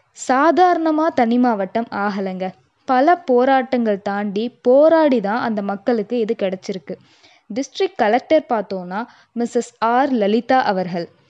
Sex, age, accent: female, 20-39, native